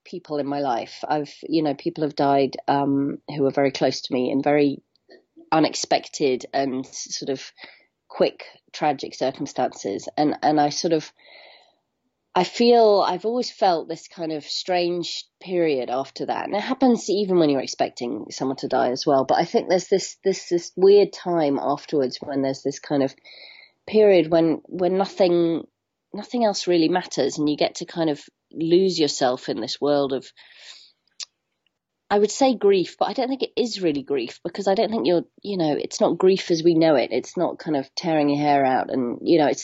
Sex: female